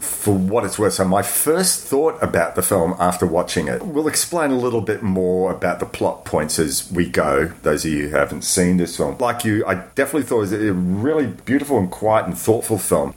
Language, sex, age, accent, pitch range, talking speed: English, male, 40-59, Australian, 90-110 Hz, 230 wpm